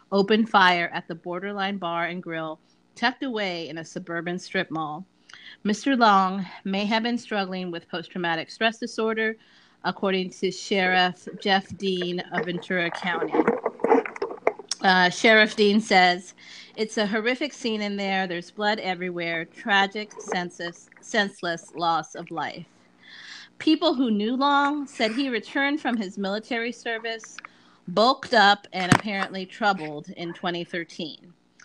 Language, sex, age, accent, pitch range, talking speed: English, female, 30-49, American, 175-215 Hz, 135 wpm